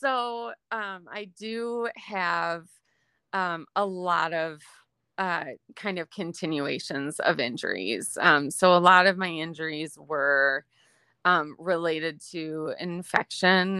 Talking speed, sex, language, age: 115 wpm, female, English, 30-49